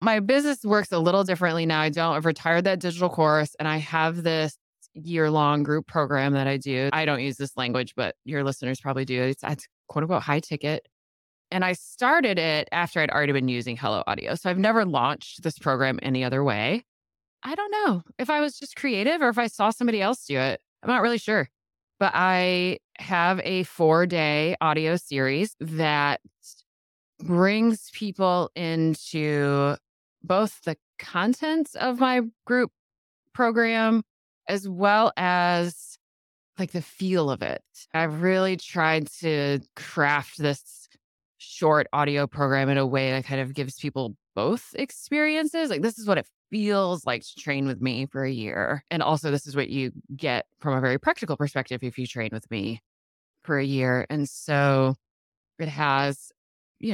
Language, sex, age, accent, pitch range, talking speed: English, female, 20-39, American, 135-185 Hz, 175 wpm